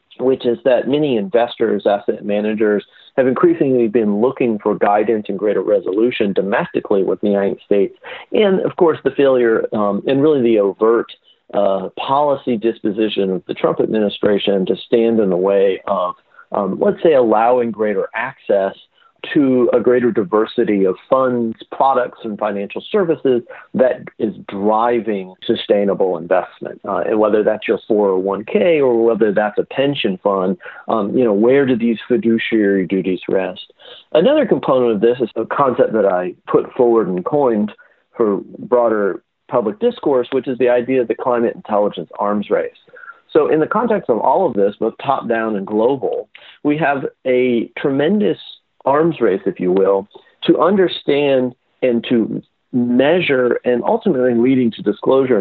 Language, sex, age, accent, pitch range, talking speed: English, male, 40-59, American, 105-135 Hz, 155 wpm